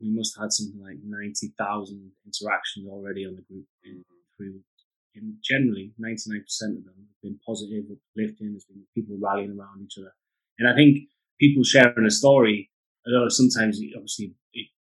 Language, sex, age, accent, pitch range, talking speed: English, male, 20-39, British, 105-125 Hz, 185 wpm